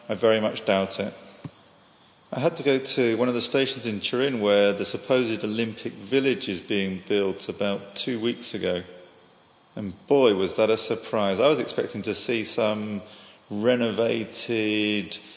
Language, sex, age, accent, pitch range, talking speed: English, male, 40-59, British, 110-125 Hz, 160 wpm